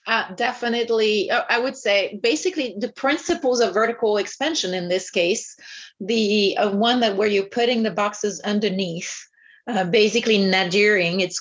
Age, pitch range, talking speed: 30-49, 190-230 Hz, 145 wpm